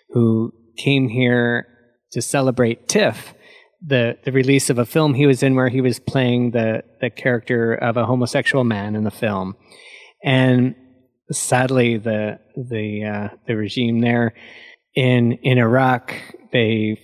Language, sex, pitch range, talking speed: English, male, 115-135 Hz, 145 wpm